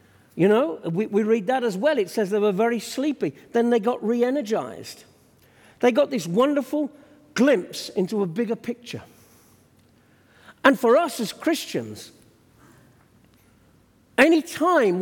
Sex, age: male, 50-69